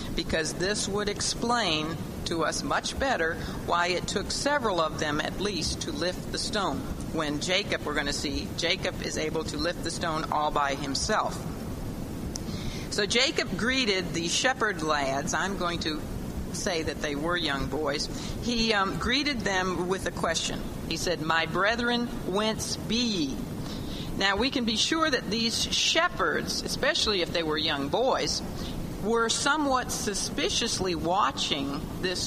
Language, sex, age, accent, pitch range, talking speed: English, female, 50-69, American, 155-215 Hz, 155 wpm